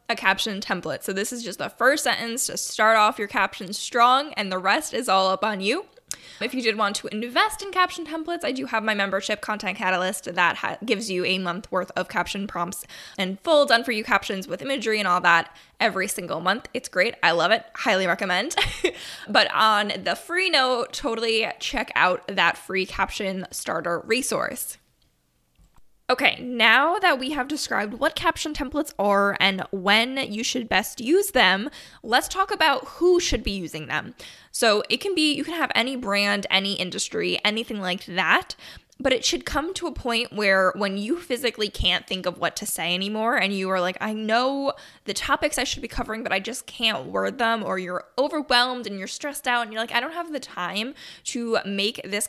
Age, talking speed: 10-29, 200 wpm